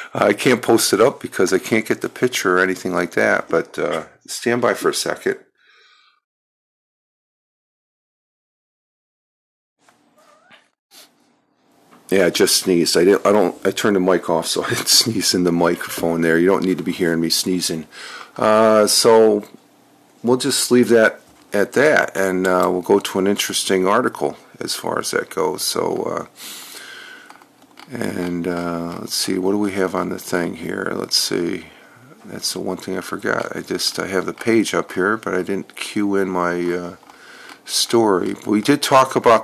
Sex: male